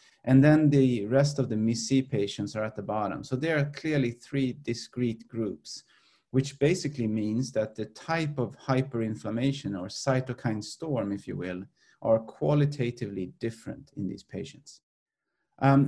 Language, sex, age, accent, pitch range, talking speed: English, male, 30-49, Swedish, 110-140 Hz, 155 wpm